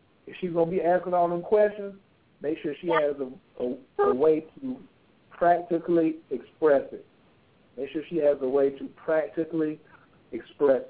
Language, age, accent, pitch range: English, 60-79, American, 125-155 Hz